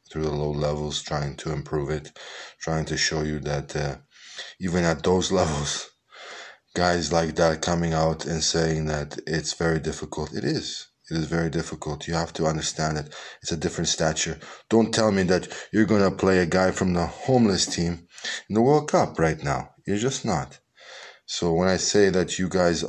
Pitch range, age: 80-90 Hz, 20-39